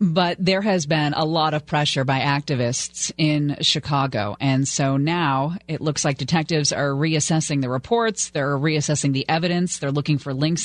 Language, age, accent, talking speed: English, 30-49, American, 175 wpm